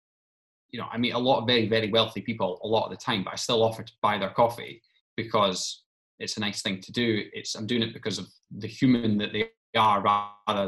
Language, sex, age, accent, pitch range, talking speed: English, male, 20-39, British, 110-135 Hz, 240 wpm